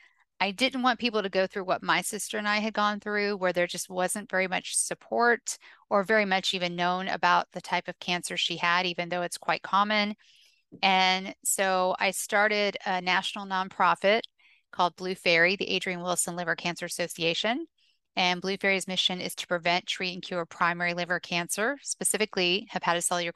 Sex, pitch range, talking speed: female, 175-200 Hz, 180 wpm